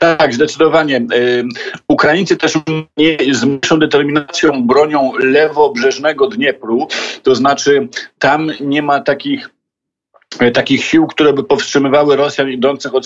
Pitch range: 130-160 Hz